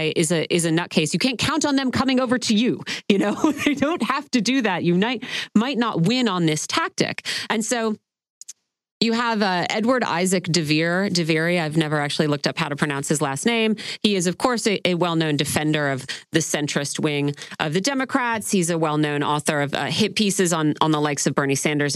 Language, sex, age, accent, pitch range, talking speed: English, female, 30-49, American, 170-255 Hz, 215 wpm